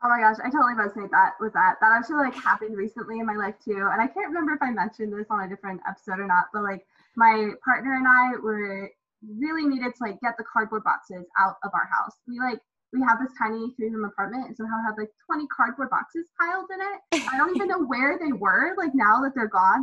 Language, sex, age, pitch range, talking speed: English, female, 20-39, 215-295 Hz, 245 wpm